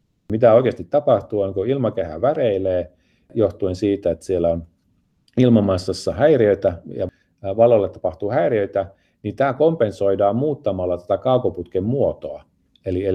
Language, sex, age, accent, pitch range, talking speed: Finnish, male, 40-59, native, 85-105 Hz, 115 wpm